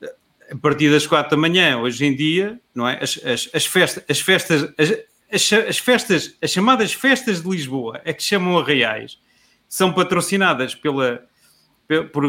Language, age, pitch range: Portuguese, 40-59, 145-185 Hz